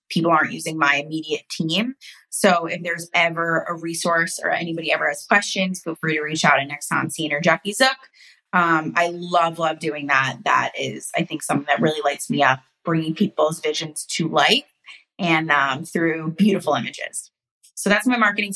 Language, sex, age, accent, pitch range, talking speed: English, female, 20-39, American, 160-195 Hz, 190 wpm